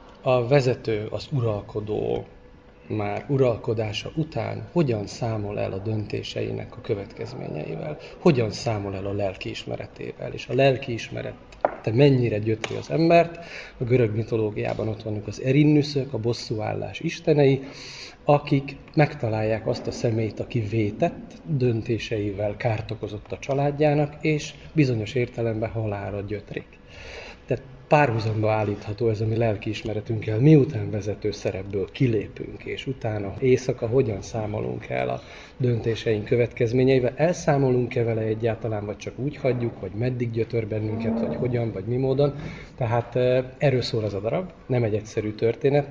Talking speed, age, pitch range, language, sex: 130 wpm, 30-49, 110-130 Hz, Hungarian, male